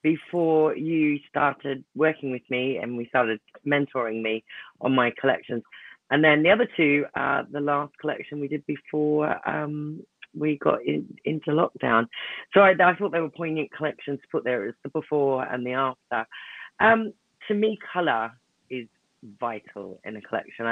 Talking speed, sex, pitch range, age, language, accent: 170 wpm, female, 120-165 Hz, 30-49, English, British